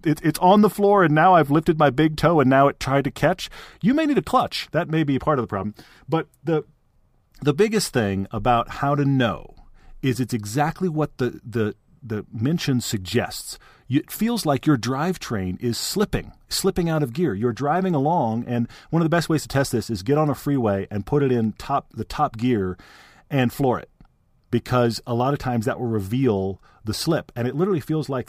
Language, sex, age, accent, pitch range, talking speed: English, male, 40-59, American, 115-150 Hz, 215 wpm